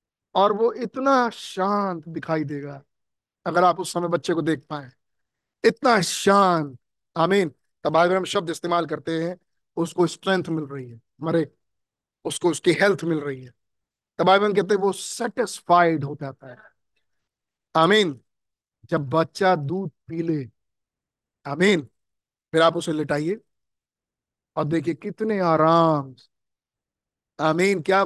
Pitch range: 155-205 Hz